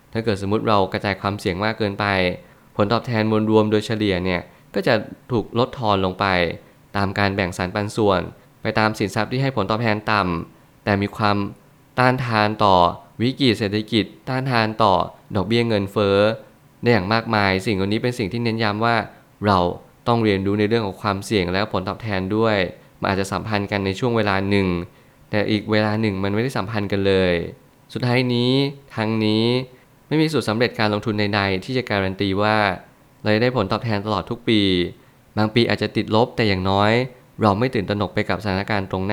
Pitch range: 100-115 Hz